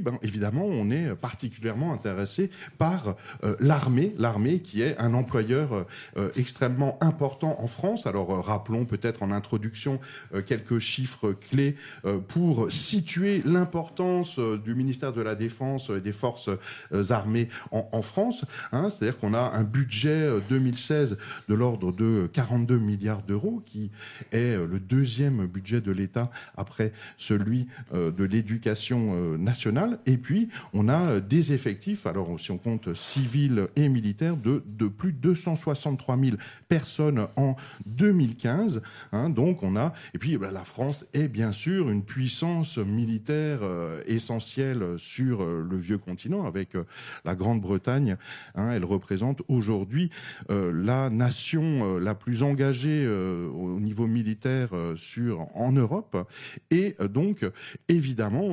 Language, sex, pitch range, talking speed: French, male, 105-140 Hz, 145 wpm